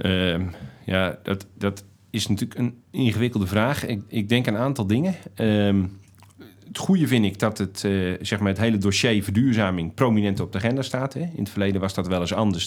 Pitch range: 100-115 Hz